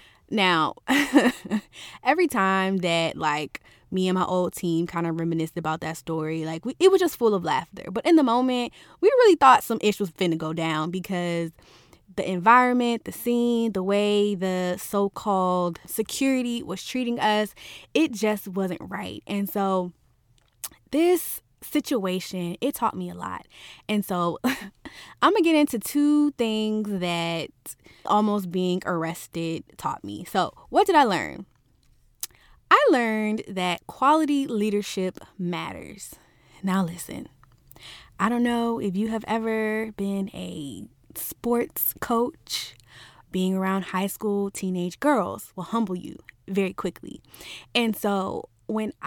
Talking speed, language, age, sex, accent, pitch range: 140 wpm, English, 20-39, female, American, 180-225 Hz